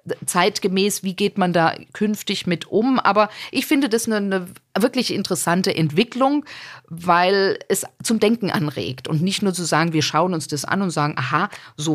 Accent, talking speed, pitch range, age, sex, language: German, 180 wpm, 170-210 Hz, 50-69, female, German